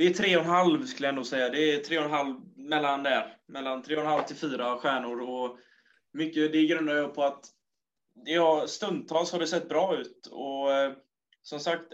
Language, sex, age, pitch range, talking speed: Swedish, male, 20-39, 135-155 Hz, 220 wpm